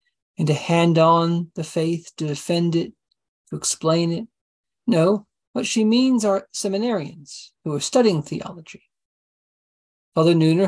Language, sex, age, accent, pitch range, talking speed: English, male, 40-59, American, 160-210 Hz, 135 wpm